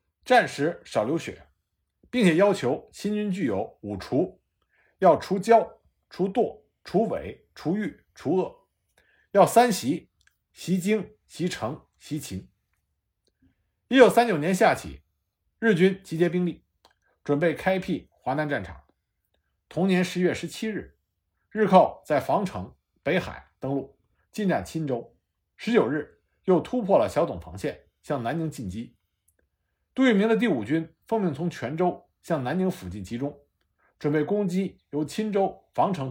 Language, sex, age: Chinese, male, 50-69